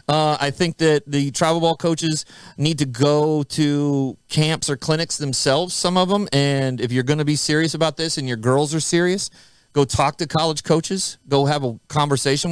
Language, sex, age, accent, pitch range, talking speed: English, male, 40-59, American, 140-180 Hz, 200 wpm